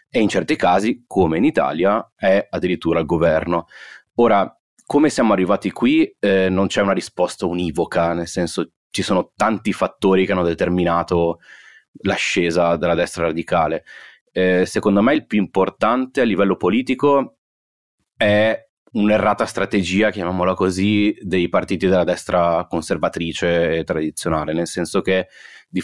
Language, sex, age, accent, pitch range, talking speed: Italian, male, 30-49, native, 85-100 Hz, 140 wpm